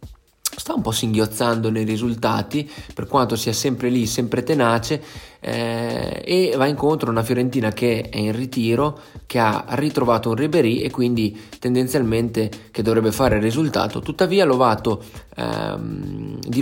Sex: male